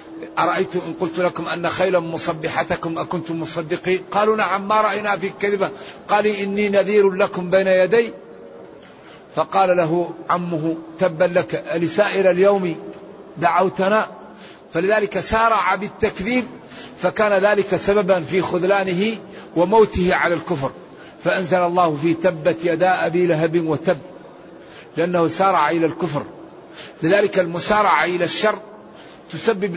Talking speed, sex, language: 115 wpm, male, Arabic